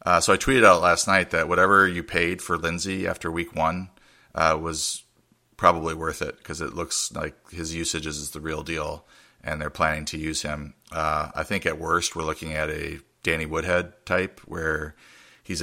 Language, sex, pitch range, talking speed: English, male, 75-80 Hz, 195 wpm